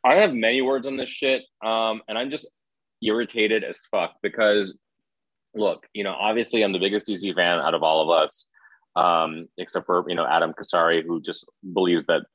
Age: 30-49